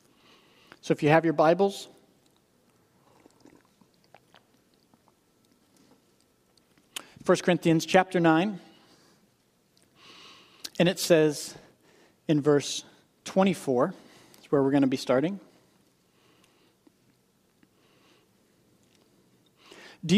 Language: English